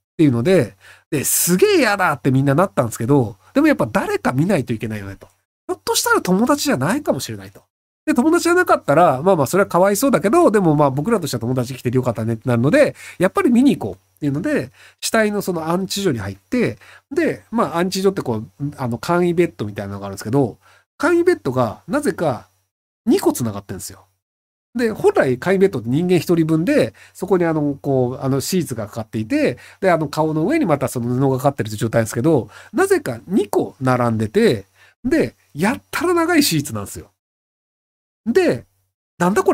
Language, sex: Japanese, male